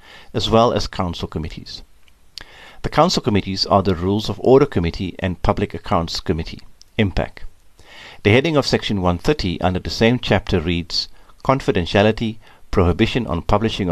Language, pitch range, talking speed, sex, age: English, 90-115 Hz, 140 wpm, male, 50-69